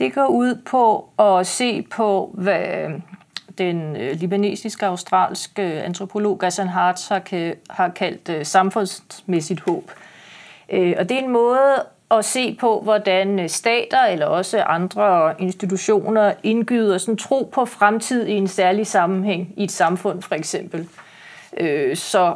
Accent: native